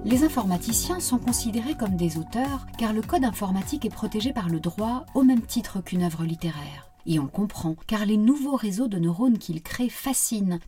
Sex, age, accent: female, 40-59, French